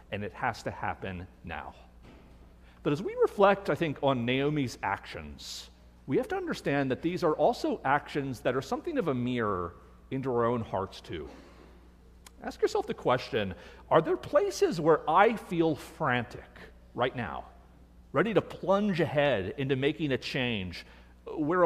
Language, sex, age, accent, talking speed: English, male, 40-59, American, 160 wpm